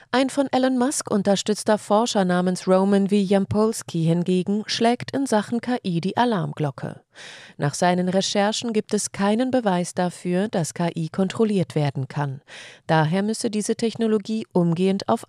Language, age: German, 30-49